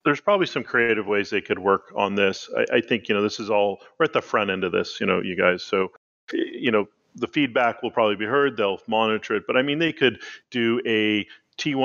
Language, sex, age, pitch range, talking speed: English, male, 40-59, 105-135 Hz, 250 wpm